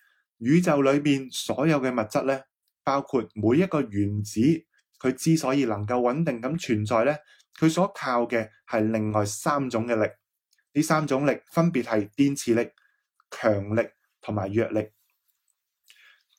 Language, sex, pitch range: Chinese, male, 110-145 Hz